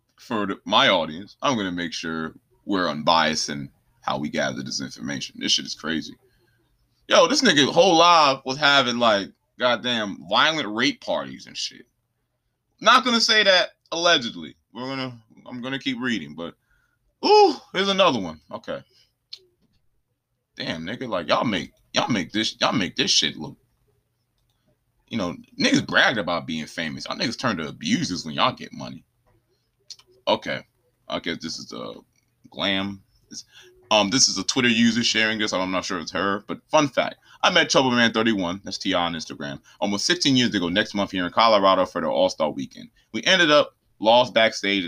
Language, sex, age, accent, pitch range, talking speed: English, male, 20-39, American, 100-135 Hz, 180 wpm